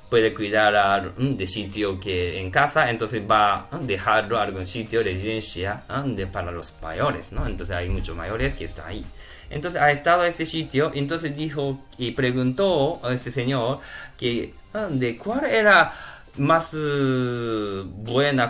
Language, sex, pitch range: Japanese, male, 105-145 Hz